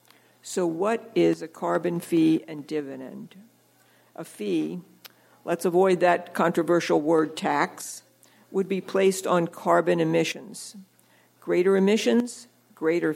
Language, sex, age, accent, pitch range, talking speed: English, female, 60-79, American, 165-200 Hz, 115 wpm